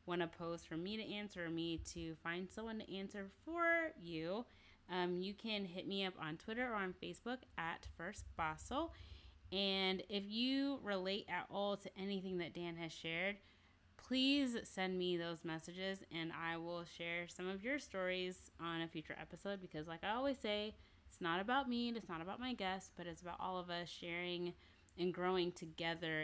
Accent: American